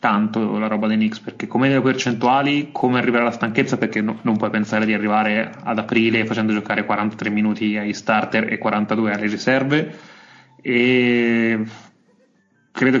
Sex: male